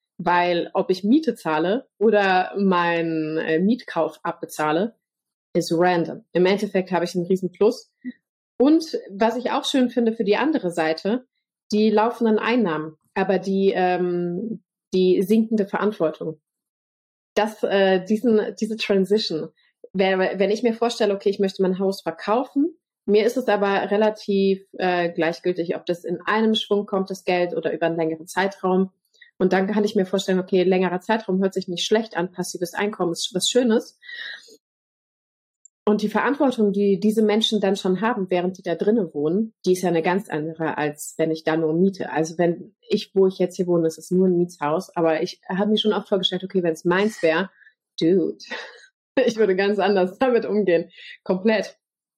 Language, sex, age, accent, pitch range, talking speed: German, female, 30-49, German, 175-210 Hz, 175 wpm